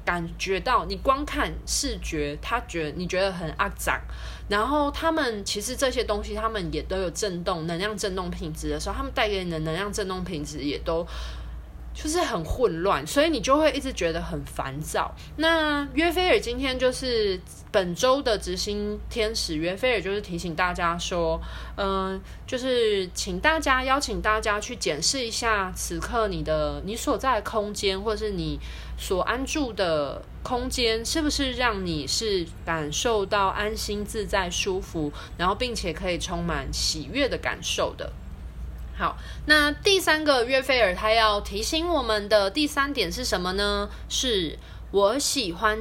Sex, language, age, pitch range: female, Chinese, 20-39, 170-260 Hz